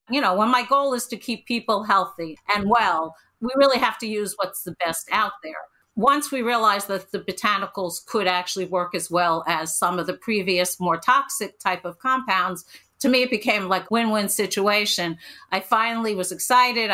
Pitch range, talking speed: 180-220 Hz, 190 wpm